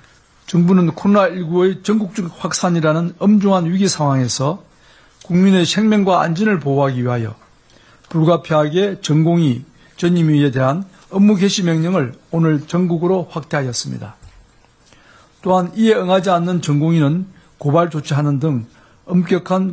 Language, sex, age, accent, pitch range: Korean, male, 60-79, native, 145-185 Hz